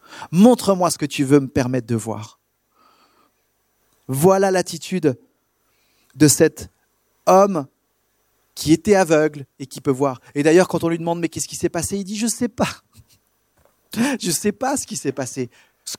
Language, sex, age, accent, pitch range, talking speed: French, male, 40-59, French, 135-200 Hz, 190 wpm